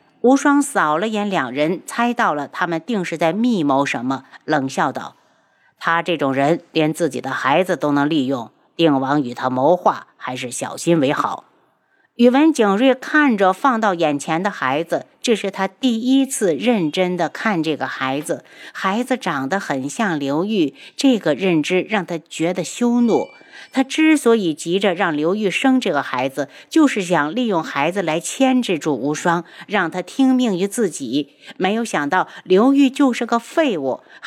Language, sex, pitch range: Chinese, female, 150-235 Hz